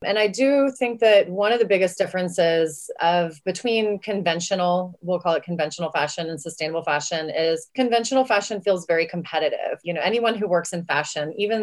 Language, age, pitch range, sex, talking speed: English, 30-49, 165-200 Hz, female, 180 wpm